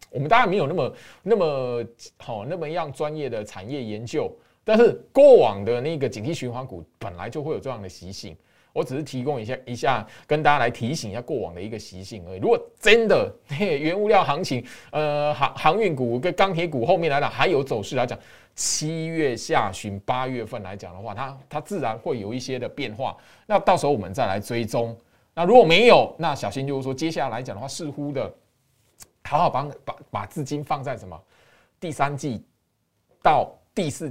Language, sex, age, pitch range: Chinese, male, 20-39, 115-155 Hz